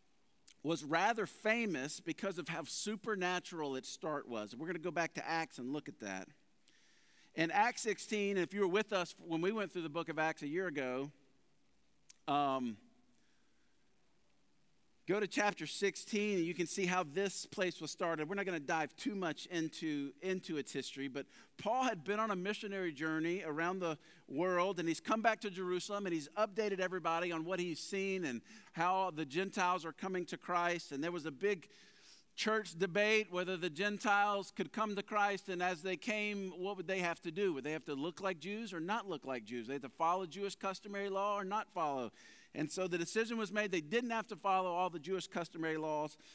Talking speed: 205 wpm